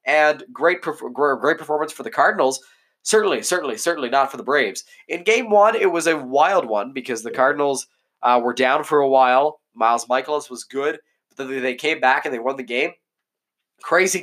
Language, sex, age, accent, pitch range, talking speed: English, male, 20-39, American, 125-160 Hz, 195 wpm